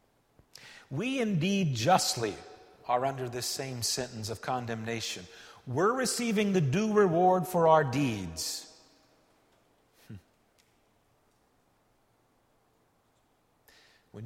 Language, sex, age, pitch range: English, male, 50-69, 115-160 Hz